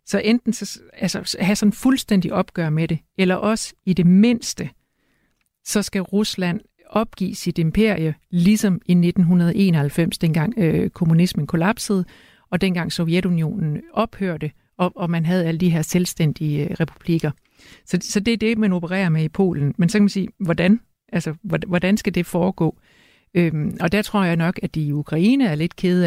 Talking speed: 170 wpm